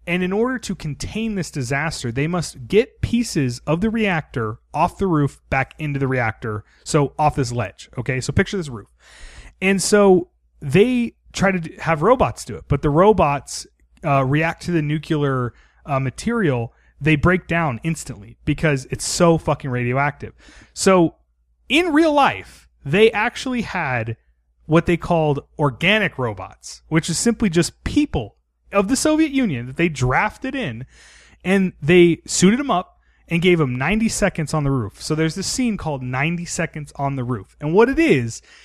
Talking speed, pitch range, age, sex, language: 170 wpm, 135-210 Hz, 30-49, male, English